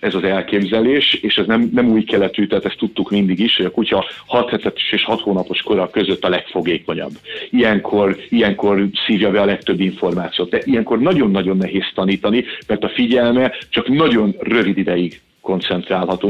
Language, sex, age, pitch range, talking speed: Hungarian, male, 50-69, 95-110 Hz, 165 wpm